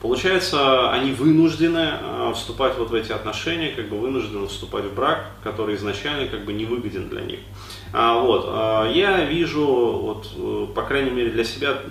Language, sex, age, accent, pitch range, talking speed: Russian, male, 30-49, native, 105-130 Hz, 170 wpm